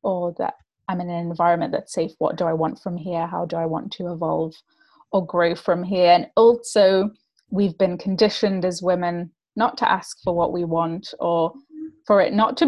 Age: 20-39